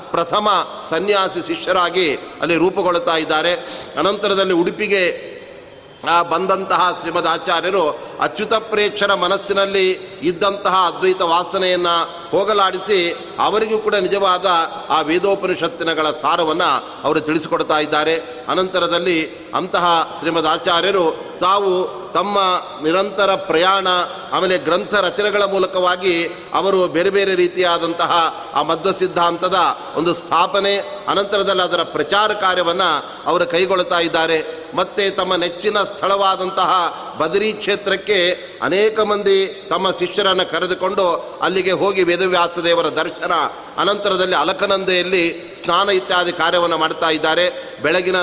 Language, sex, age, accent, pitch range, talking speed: Kannada, male, 30-49, native, 170-200 Hz, 95 wpm